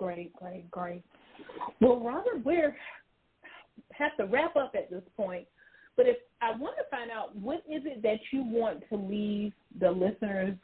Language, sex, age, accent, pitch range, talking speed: English, female, 40-59, American, 185-250 Hz, 170 wpm